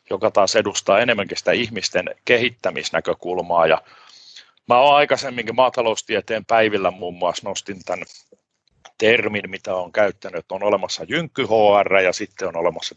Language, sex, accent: Finnish, male, native